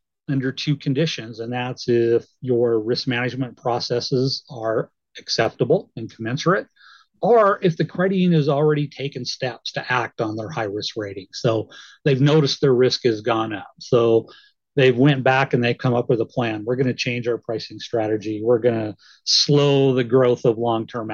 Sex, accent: male, American